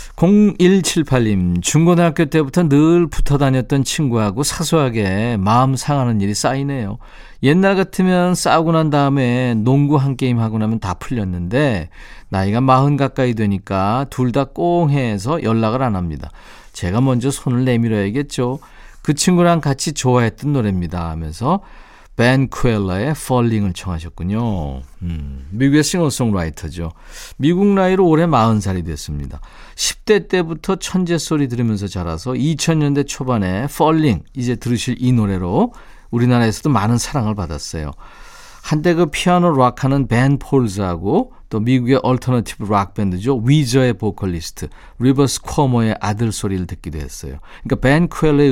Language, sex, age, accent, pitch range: Korean, male, 40-59, native, 105-150 Hz